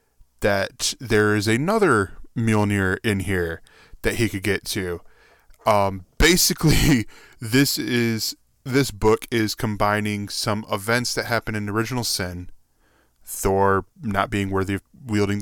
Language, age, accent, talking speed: English, 10-29, American, 130 wpm